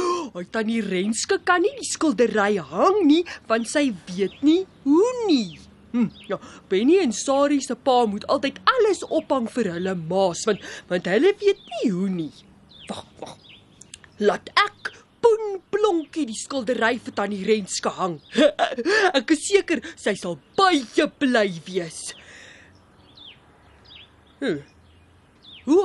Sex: female